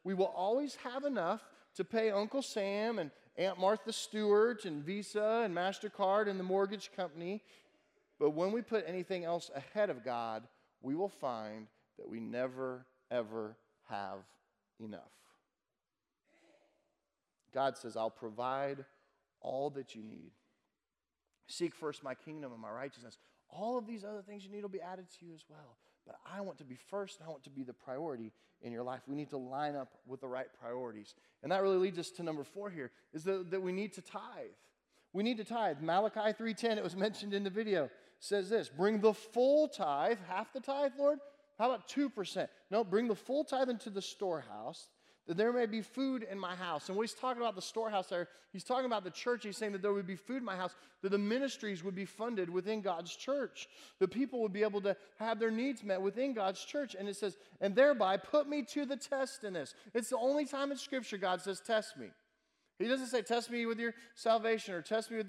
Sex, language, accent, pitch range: male, English, American, 170-230 Hz